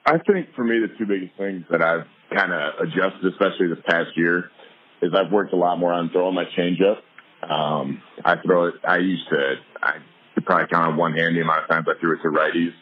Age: 30-49